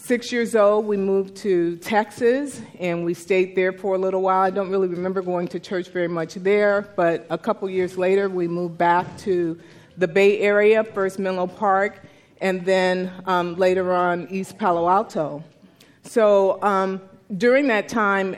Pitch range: 170-210 Hz